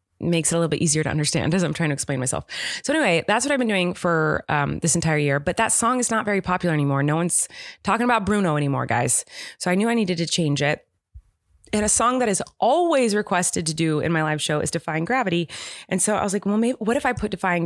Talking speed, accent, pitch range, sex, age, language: 260 wpm, American, 155-205 Hz, female, 20-39, English